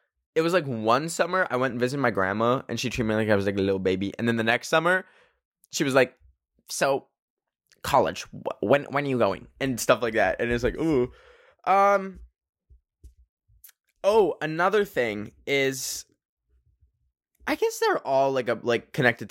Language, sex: English, male